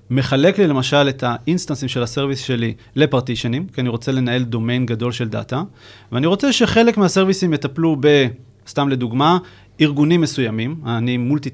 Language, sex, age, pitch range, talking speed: Hebrew, male, 30-49, 120-145 Hz, 150 wpm